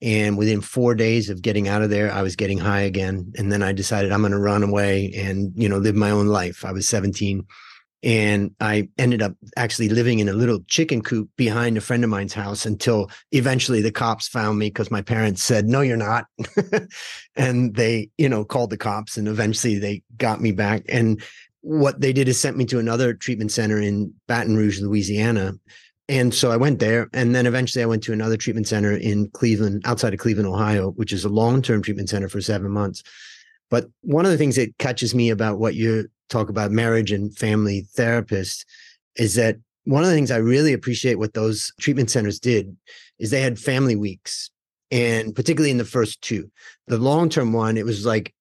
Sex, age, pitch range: male, 30-49, 105-125 Hz